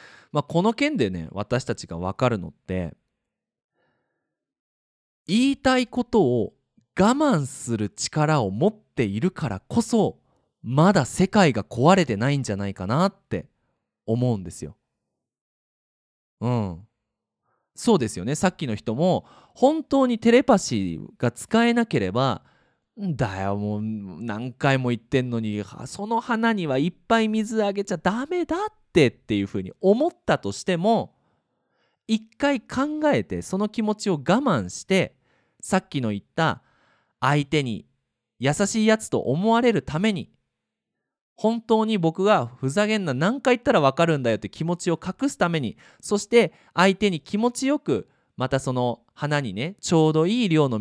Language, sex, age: Japanese, male, 20-39